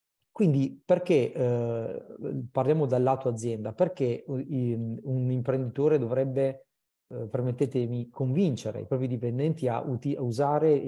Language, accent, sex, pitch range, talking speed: Italian, native, male, 115-140 Hz, 100 wpm